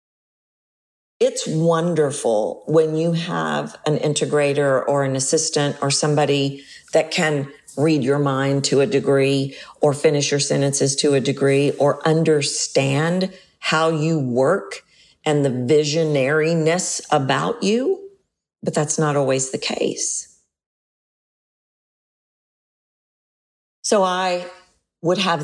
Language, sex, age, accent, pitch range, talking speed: English, female, 50-69, American, 145-170 Hz, 110 wpm